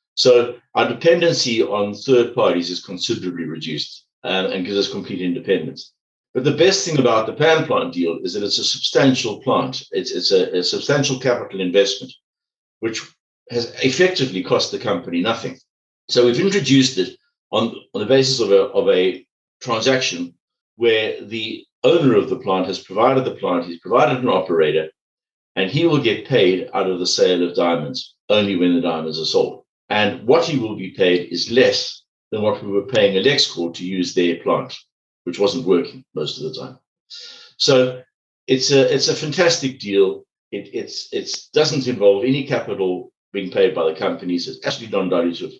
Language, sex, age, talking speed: English, male, 60-79, 175 wpm